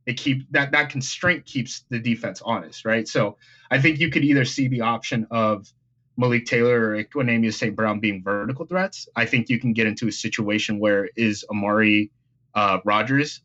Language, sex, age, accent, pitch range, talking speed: English, male, 20-39, American, 110-125 Hz, 200 wpm